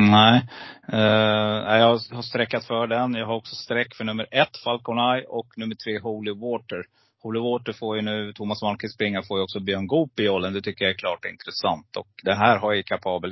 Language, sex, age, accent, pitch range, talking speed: Swedish, male, 30-49, native, 100-120 Hz, 205 wpm